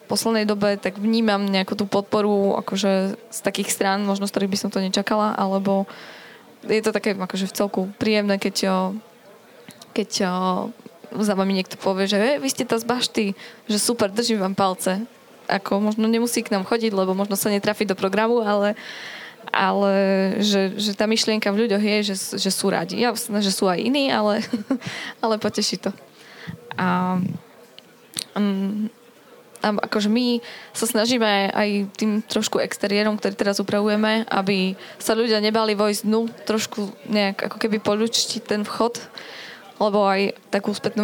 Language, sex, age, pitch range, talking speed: Slovak, female, 10-29, 195-220 Hz, 155 wpm